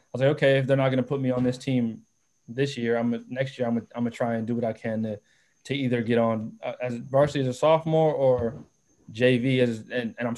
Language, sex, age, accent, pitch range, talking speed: English, male, 20-39, American, 120-140 Hz, 255 wpm